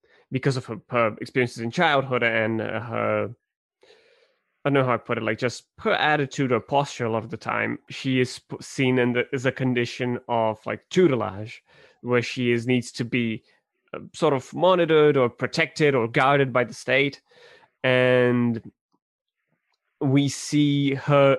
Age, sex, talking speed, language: 20-39, male, 160 wpm, English